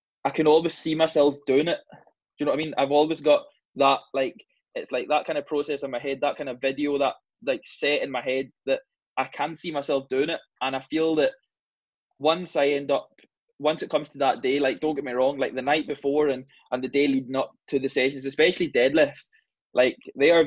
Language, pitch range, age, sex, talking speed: English, 135-155 Hz, 20-39, male, 235 wpm